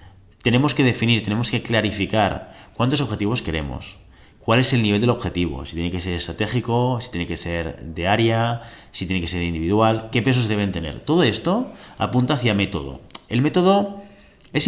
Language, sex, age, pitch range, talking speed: Spanish, male, 30-49, 90-115 Hz, 175 wpm